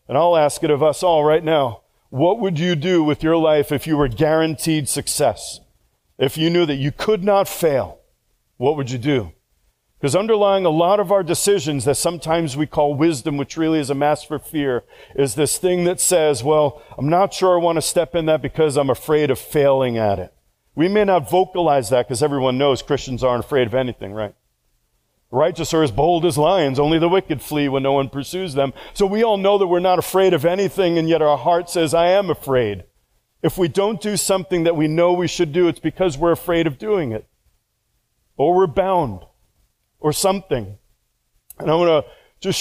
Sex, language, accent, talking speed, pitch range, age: male, English, American, 210 wpm, 140-175 Hz, 40-59